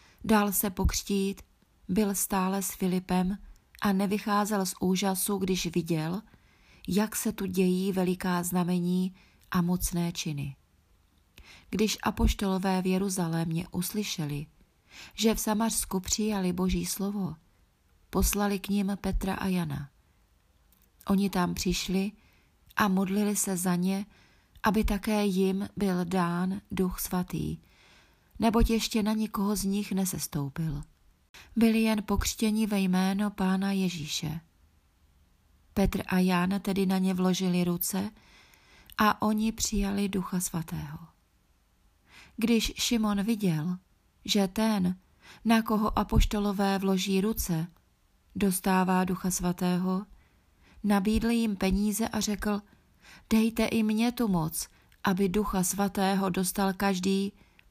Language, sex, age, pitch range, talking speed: Czech, female, 30-49, 180-205 Hz, 115 wpm